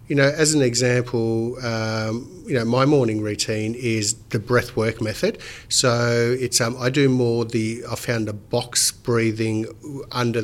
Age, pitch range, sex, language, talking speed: 50-69, 110-125 Hz, male, English, 165 wpm